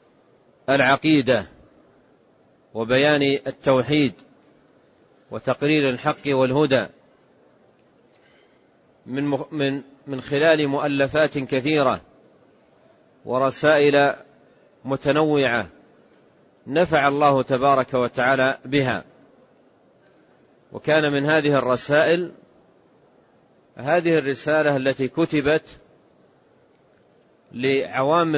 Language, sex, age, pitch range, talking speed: Arabic, male, 40-59, 130-150 Hz, 60 wpm